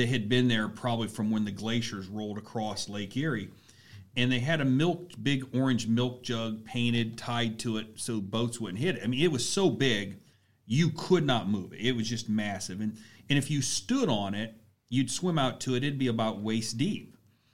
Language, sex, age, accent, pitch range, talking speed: English, male, 40-59, American, 110-130 Hz, 215 wpm